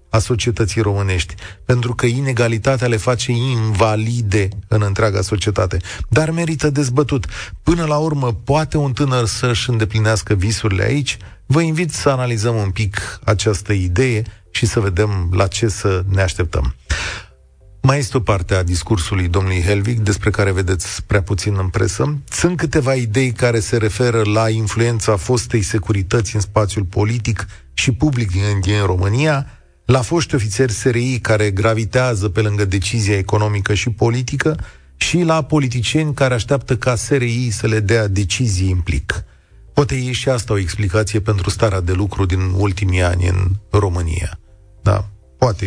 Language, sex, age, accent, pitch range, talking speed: Romanian, male, 30-49, native, 100-125 Hz, 150 wpm